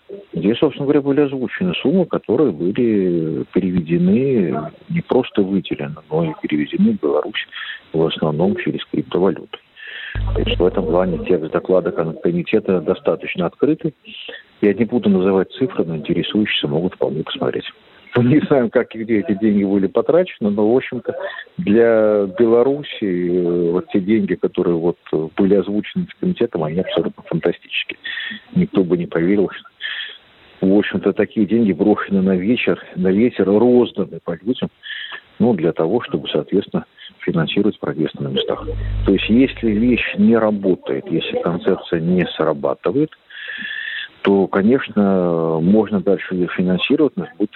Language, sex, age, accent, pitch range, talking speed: Russian, male, 50-69, native, 95-145 Hz, 140 wpm